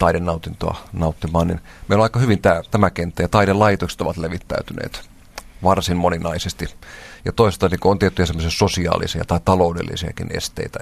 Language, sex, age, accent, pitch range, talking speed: Finnish, male, 40-59, native, 85-100 Hz, 140 wpm